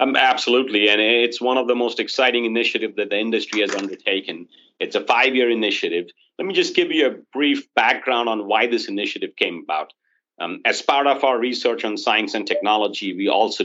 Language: English